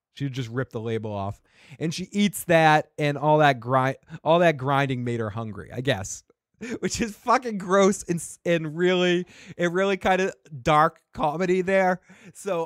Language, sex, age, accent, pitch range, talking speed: English, male, 20-39, American, 125-170 Hz, 175 wpm